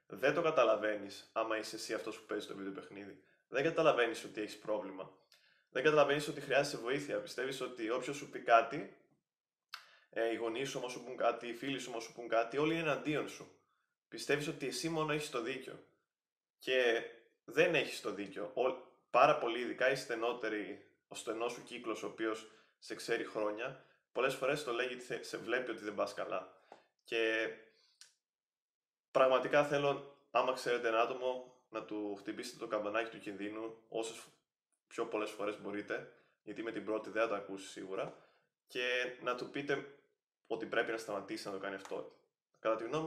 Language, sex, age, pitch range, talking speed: Greek, male, 20-39, 110-150 Hz, 175 wpm